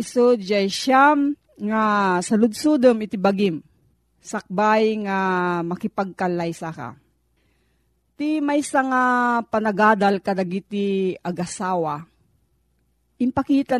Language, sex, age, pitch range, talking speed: Filipino, female, 40-59, 185-240 Hz, 80 wpm